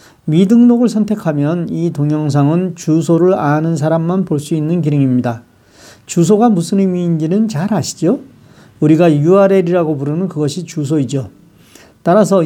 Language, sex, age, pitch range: Korean, male, 40-59, 145-195 Hz